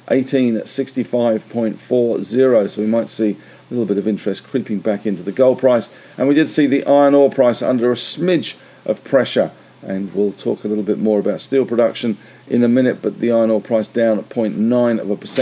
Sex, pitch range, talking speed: male, 105-125 Hz, 215 wpm